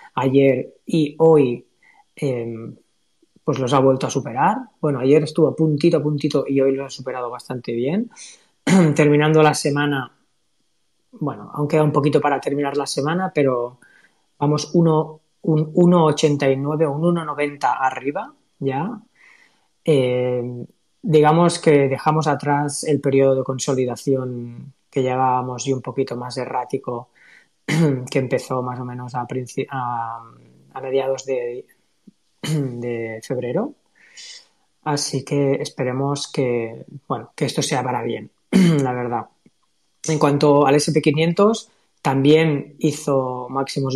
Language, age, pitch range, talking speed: Spanish, 20-39, 130-155 Hz, 125 wpm